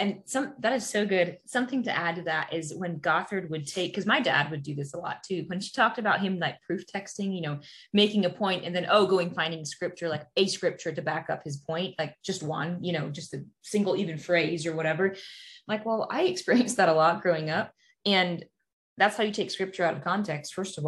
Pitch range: 165-210 Hz